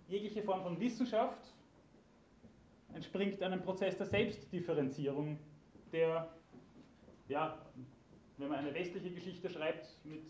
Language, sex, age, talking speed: German, male, 30-49, 105 wpm